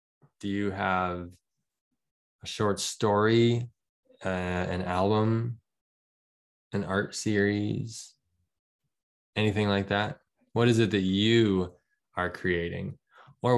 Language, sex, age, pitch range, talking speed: English, male, 10-29, 90-115 Hz, 100 wpm